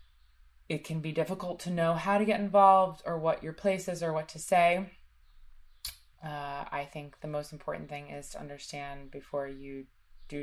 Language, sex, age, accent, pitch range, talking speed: English, female, 20-39, American, 135-155 Hz, 185 wpm